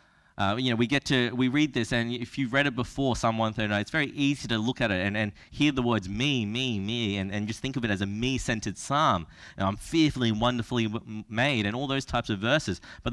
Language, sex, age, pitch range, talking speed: English, male, 20-39, 95-125 Hz, 245 wpm